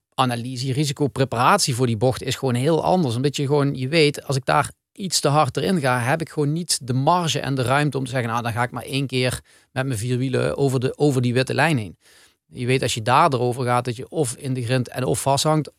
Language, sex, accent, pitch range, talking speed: Dutch, male, Dutch, 125-145 Hz, 260 wpm